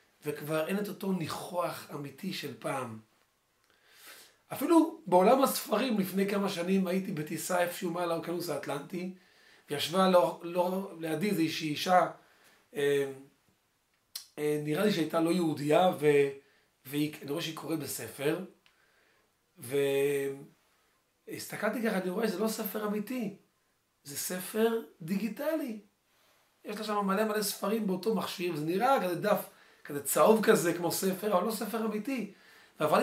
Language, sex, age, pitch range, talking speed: Hebrew, male, 40-59, 155-205 Hz, 130 wpm